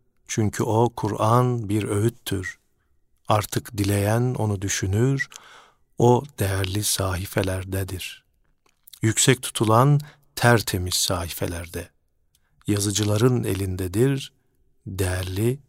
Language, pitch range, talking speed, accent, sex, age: Turkish, 100-125 Hz, 75 wpm, native, male, 50-69